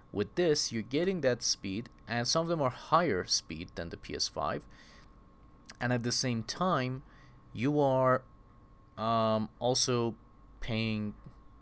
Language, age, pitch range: English, 30-49, 105-140 Hz